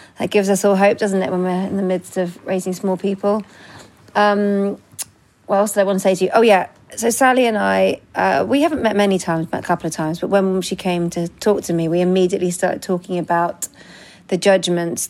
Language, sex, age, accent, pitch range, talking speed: English, female, 40-59, British, 170-215 Hz, 230 wpm